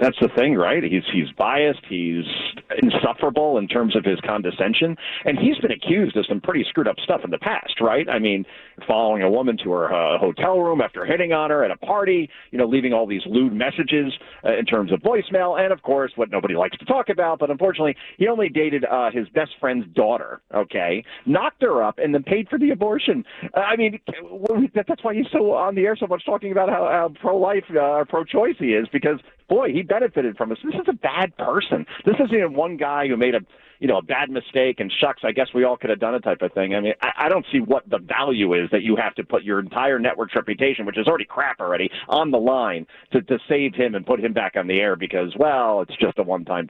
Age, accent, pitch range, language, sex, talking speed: 40-59, American, 125-210 Hz, English, male, 245 wpm